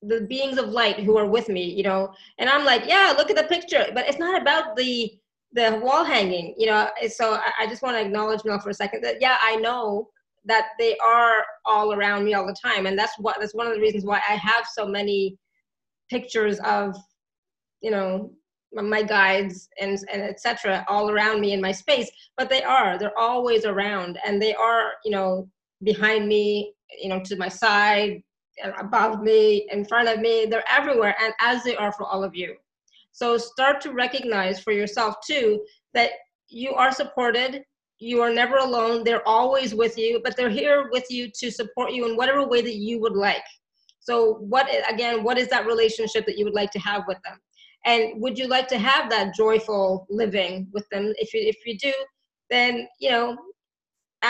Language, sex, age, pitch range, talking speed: English, female, 20-39, 205-245 Hz, 200 wpm